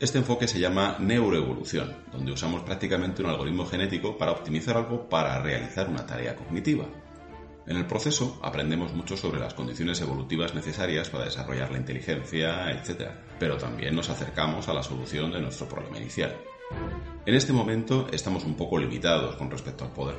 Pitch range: 75-105 Hz